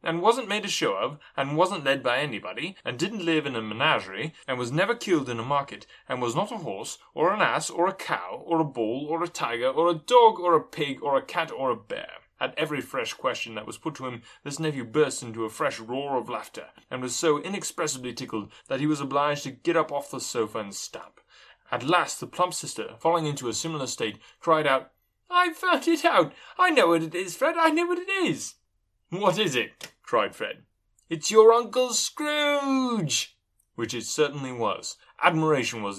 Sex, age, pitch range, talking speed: male, 20-39, 120-180 Hz, 215 wpm